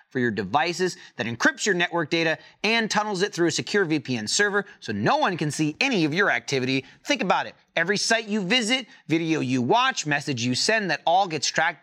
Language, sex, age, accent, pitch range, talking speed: English, male, 30-49, American, 145-205 Hz, 215 wpm